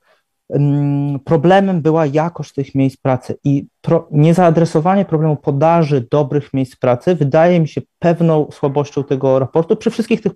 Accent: native